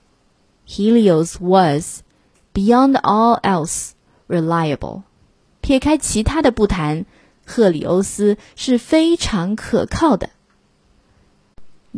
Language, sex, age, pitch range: Chinese, female, 20-39, 170-240 Hz